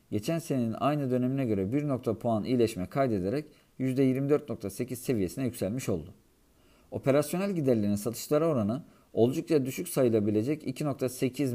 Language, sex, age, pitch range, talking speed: Turkish, male, 50-69, 115-145 Hz, 110 wpm